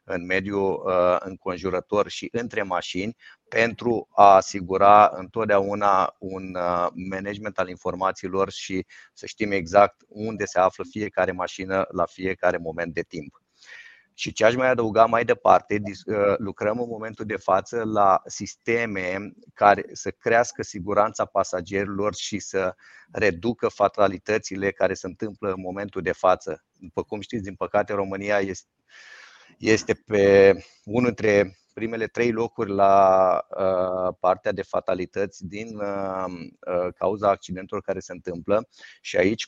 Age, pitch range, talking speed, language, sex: 30-49, 95-105 Hz, 130 wpm, Romanian, male